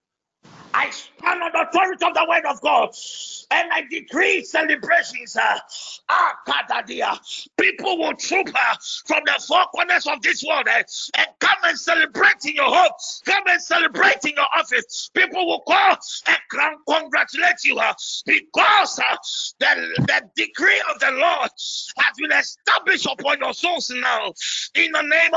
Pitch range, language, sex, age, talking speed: 305-355 Hz, English, male, 50-69, 165 wpm